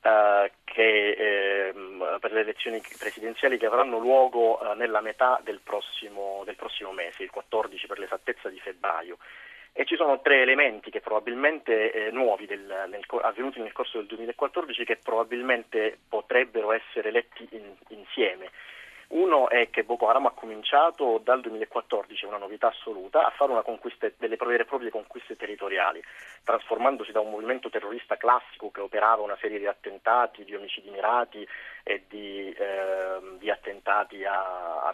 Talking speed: 155 wpm